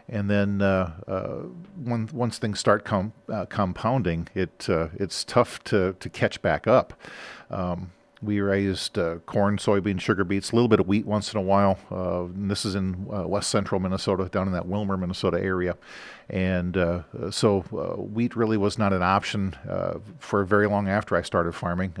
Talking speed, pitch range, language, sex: 190 wpm, 90-105 Hz, English, male